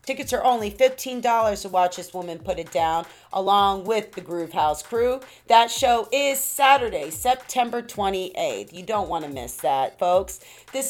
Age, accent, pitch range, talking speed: 40-59, American, 180-240 Hz, 170 wpm